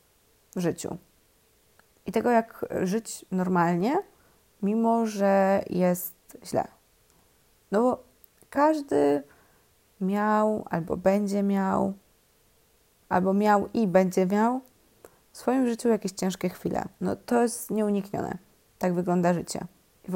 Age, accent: 20-39, native